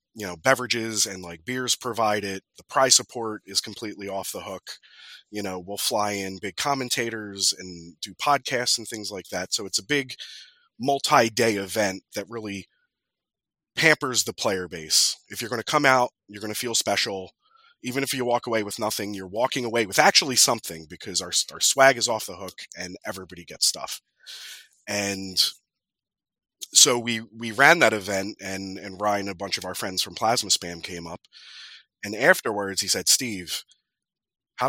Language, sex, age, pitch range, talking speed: English, male, 30-49, 95-130 Hz, 180 wpm